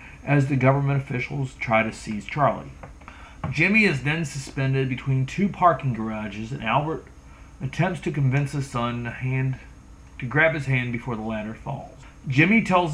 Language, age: English, 40-59